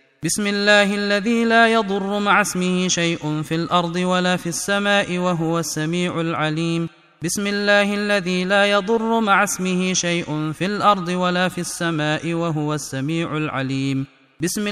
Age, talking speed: 30-49, 135 wpm